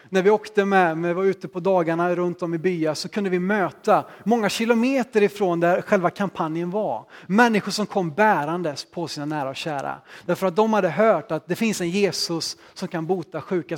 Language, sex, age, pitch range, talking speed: Swedish, male, 30-49, 175-210 Hz, 205 wpm